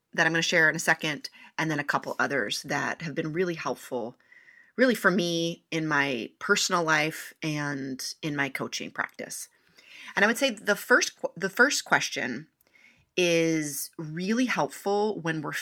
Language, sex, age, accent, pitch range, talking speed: English, female, 30-49, American, 160-210 Hz, 170 wpm